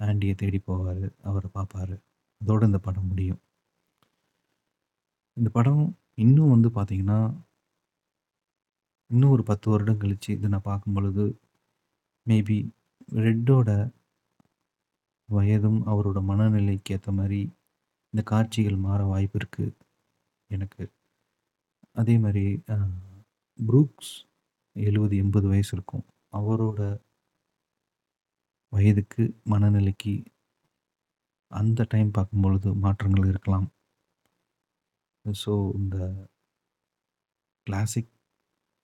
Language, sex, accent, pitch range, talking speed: Tamil, male, native, 100-110 Hz, 80 wpm